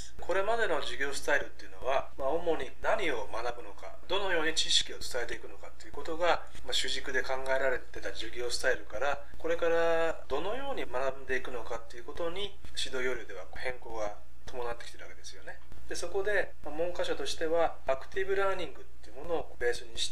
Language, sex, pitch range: Japanese, male, 120-175 Hz